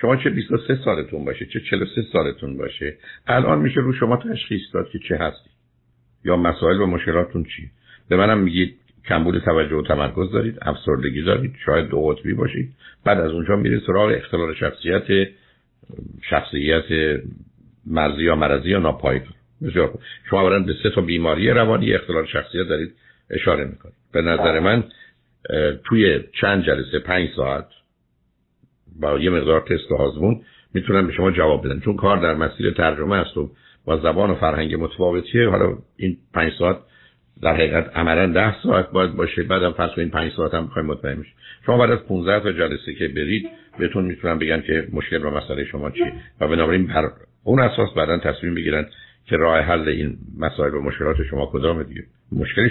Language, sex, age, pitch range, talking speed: Persian, male, 60-79, 75-95 Hz, 165 wpm